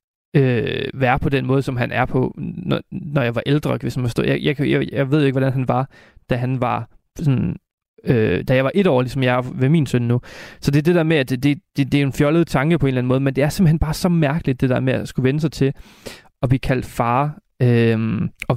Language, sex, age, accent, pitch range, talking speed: Danish, male, 30-49, native, 125-150 Hz, 255 wpm